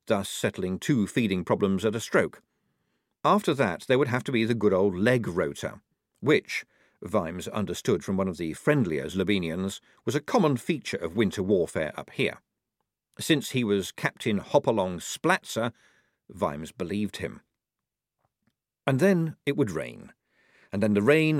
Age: 50-69